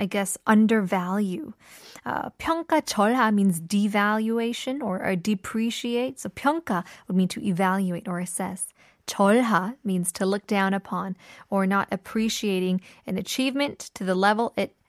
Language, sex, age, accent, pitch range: Korean, female, 10-29, American, 195-250 Hz